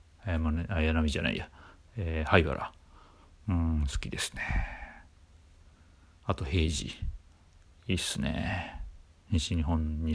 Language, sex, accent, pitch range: Japanese, male, native, 80-105 Hz